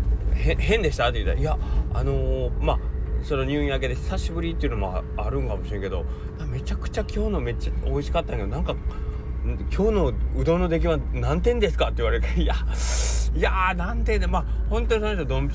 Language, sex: Japanese, male